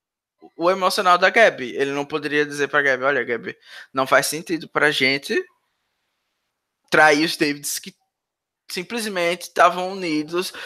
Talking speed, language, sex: 140 wpm, Portuguese, male